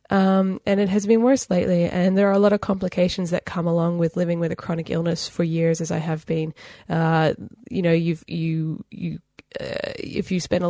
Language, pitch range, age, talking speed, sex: English, 160-190 Hz, 20-39, 230 wpm, female